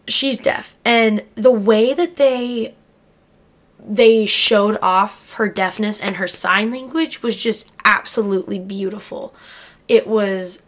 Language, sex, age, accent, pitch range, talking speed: English, female, 10-29, American, 190-230 Hz, 125 wpm